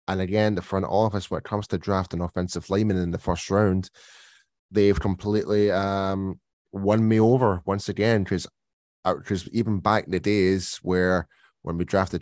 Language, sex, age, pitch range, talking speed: English, male, 10-29, 90-105 Hz, 165 wpm